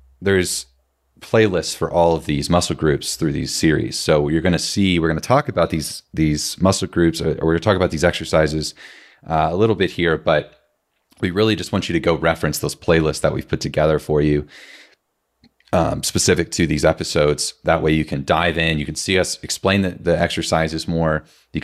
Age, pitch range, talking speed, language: 30-49, 75-95 Hz, 200 wpm, English